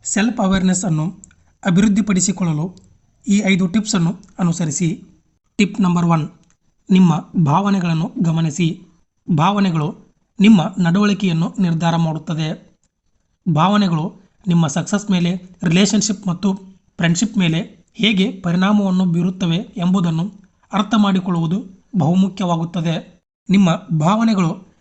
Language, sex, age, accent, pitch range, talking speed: Kannada, male, 30-49, native, 170-195 Hz, 85 wpm